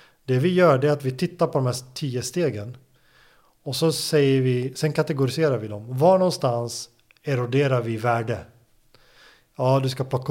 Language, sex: Swedish, male